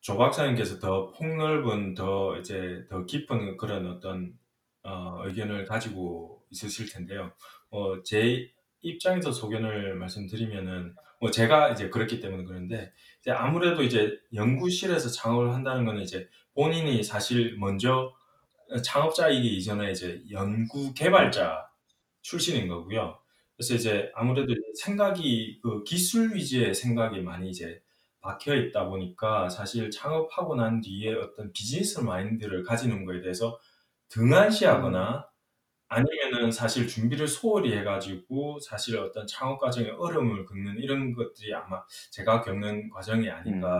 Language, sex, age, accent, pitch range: Korean, male, 20-39, native, 100-130 Hz